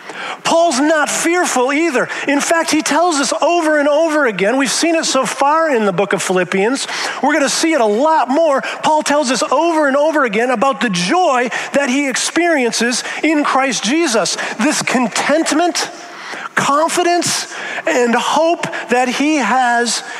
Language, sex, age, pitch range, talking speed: English, male, 40-59, 225-310 Hz, 160 wpm